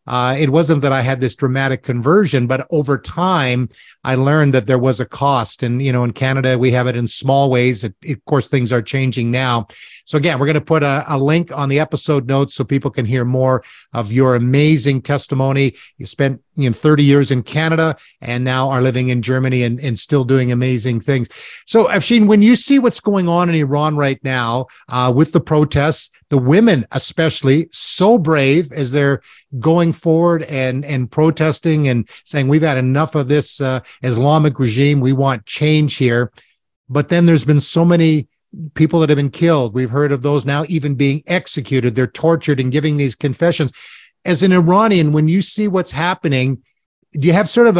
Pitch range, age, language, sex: 130-160 Hz, 50-69, English, male